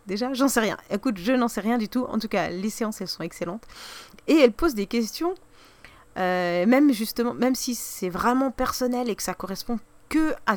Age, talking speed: 30-49, 215 wpm